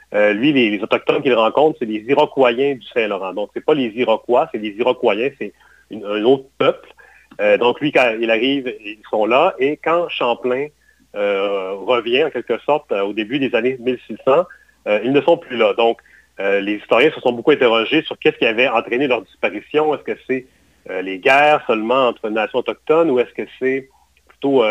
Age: 40-59